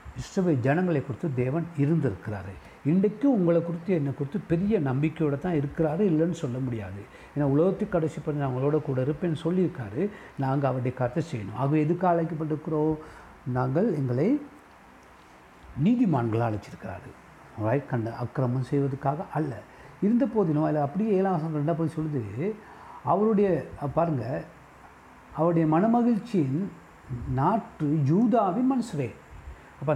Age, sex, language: 60-79, male, Tamil